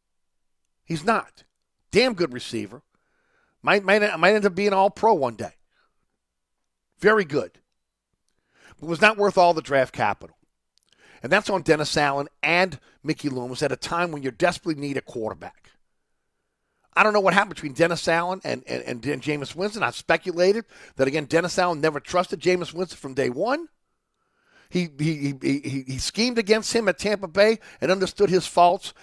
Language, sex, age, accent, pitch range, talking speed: English, male, 40-59, American, 145-205 Hz, 170 wpm